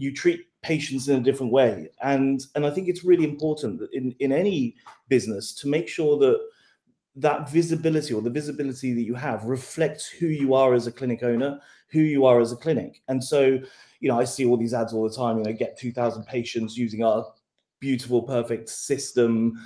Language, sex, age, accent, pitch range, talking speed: English, male, 30-49, British, 125-170 Hz, 205 wpm